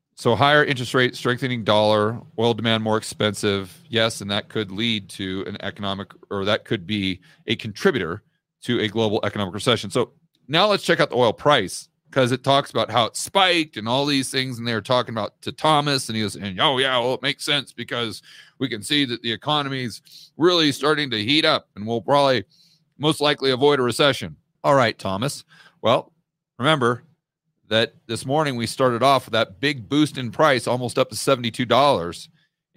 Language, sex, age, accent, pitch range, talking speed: English, male, 40-59, American, 115-160 Hz, 195 wpm